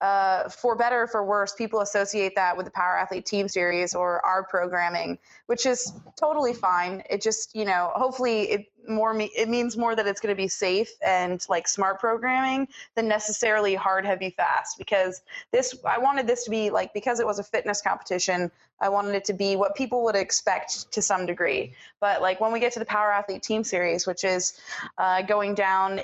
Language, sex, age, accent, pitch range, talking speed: English, female, 20-39, American, 185-220 Hz, 205 wpm